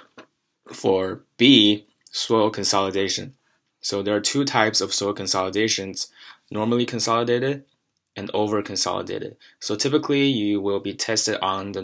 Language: English